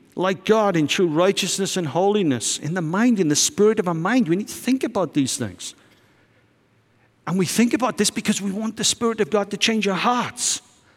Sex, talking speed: male, 215 wpm